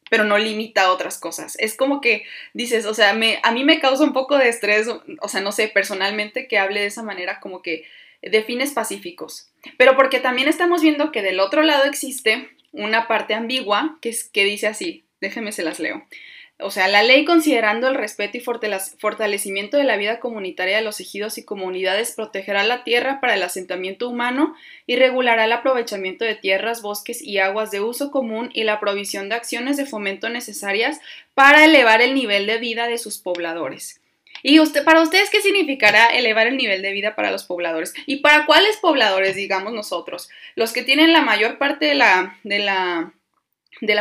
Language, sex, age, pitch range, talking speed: Spanish, female, 20-39, 205-275 Hz, 195 wpm